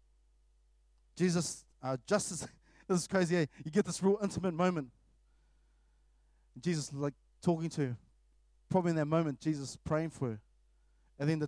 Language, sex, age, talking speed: English, male, 20-39, 150 wpm